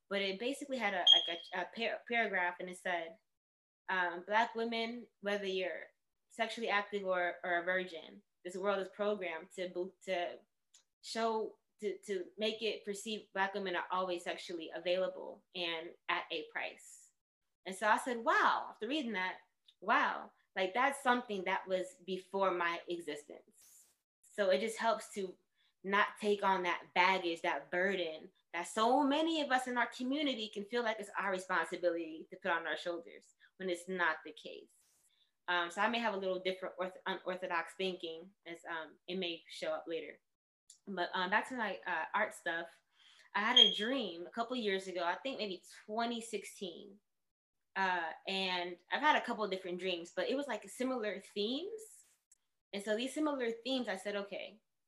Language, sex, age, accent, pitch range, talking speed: Russian, female, 20-39, American, 180-225 Hz, 175 wpm